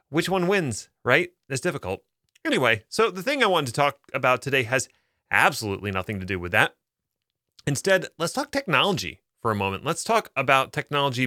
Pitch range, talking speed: 110-155 Hz, 180 wpm